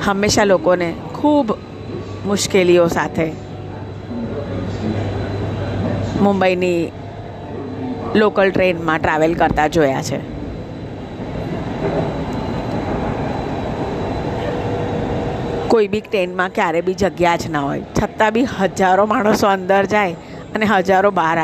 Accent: native